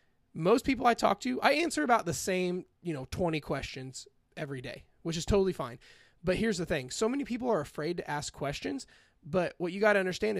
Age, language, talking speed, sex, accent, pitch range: 20-39, English, 220 wpm, male, American, 145-190 Hz